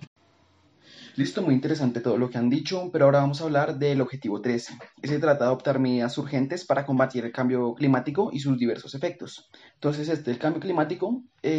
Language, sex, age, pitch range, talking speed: Spanish, male, 20-39, 130-165 Hz, 195 wpm